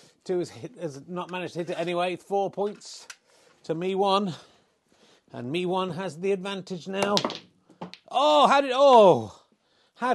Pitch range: 155-195 Hz